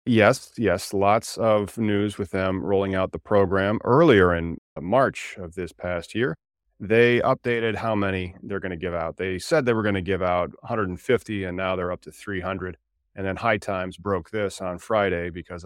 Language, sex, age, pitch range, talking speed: English, male, 30-49, 90-110 Hz, 195 wpm